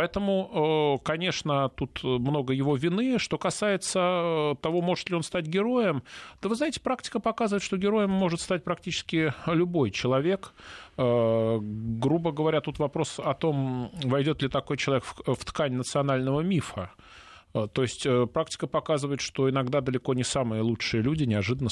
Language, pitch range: Russian, 115-160 Hz